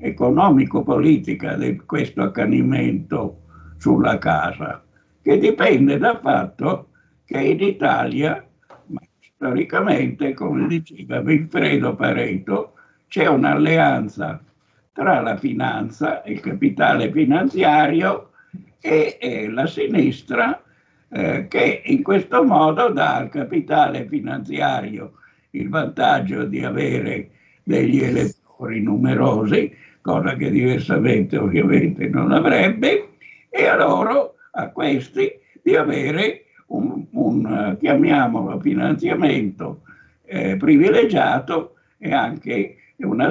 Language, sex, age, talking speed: Italian, male, 60-79, 95 wpm